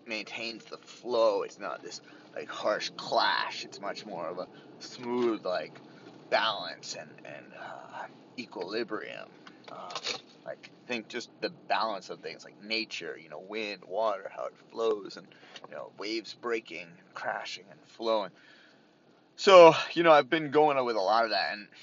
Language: English